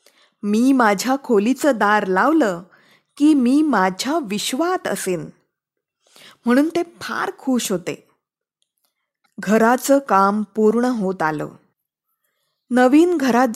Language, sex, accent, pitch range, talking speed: Marathi, female, native, 210-295 Hz, 95 wpm